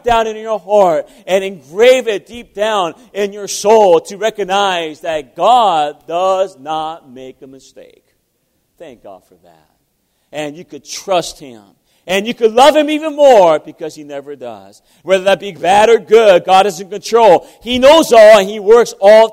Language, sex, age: English, male, 40-59